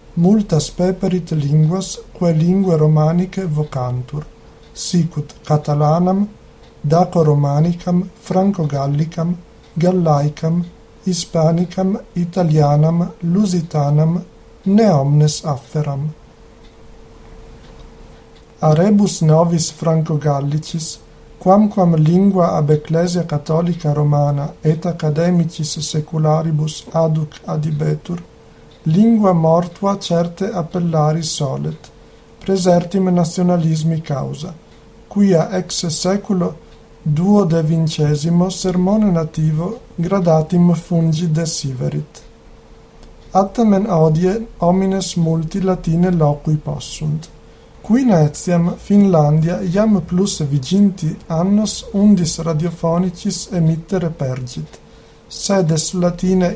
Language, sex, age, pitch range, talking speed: Italian, male, 50-69, 155-185 Hz, 75 wpm